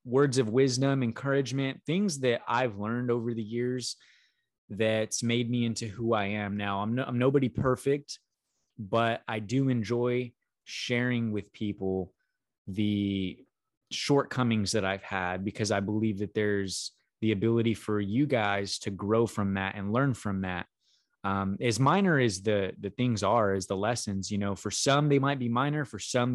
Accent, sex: American, male